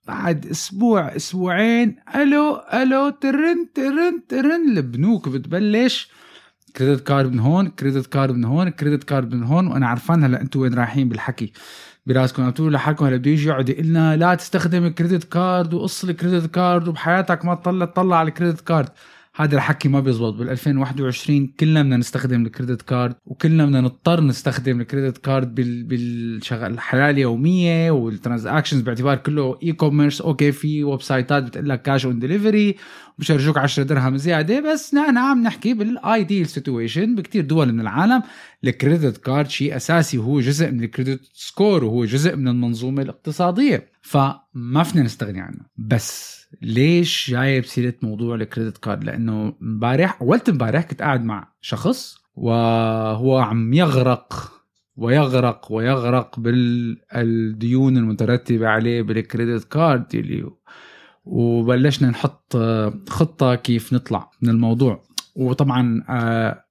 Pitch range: 125-170 Hz